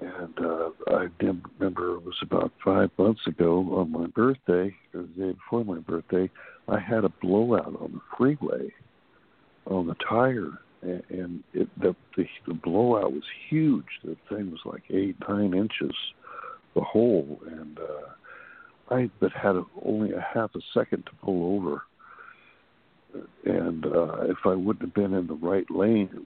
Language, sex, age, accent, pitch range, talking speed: English, male, 60-79, American, 85-115 Hz, 165 wpm